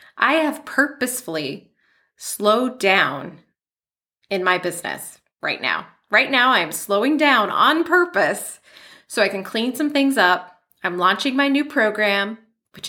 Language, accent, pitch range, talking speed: English, American, 195-280 Hz, 140 wpm